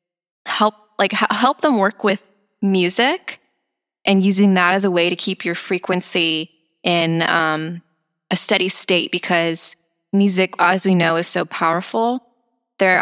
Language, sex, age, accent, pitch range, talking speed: English, female, 20-39, American, 175-205 Hz, 145 wpm